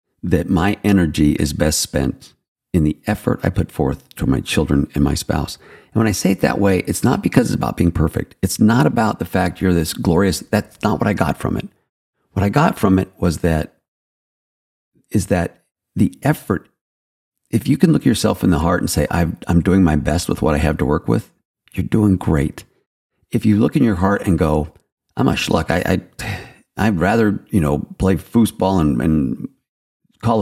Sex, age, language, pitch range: male, 50-69, English, 75-95 Hz